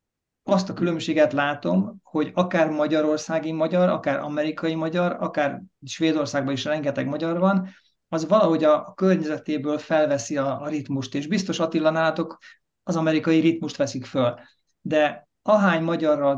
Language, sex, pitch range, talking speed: Hungarian, male, 145-175 Hz, 130 wpm